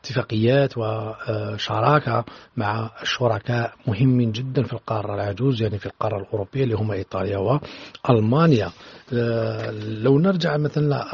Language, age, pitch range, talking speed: Arabic, 40-59, 115-150 Hz, 110 wpm